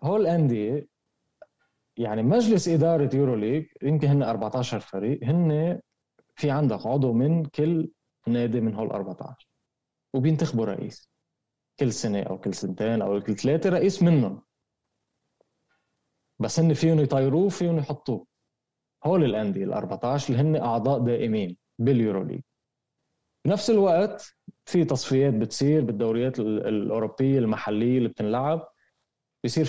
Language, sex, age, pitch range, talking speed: Arabic, male, 20-39, 120-160 Hz, 120 wpm